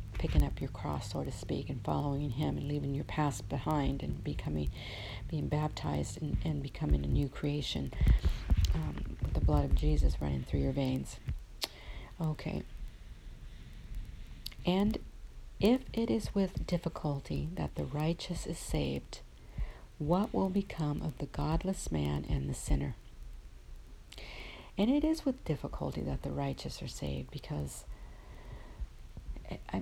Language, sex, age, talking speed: English, female, 50-69, 140 wpm